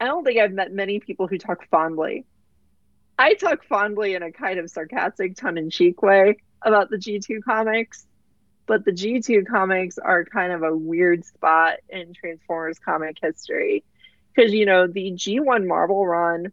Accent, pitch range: American, 180-230 Hz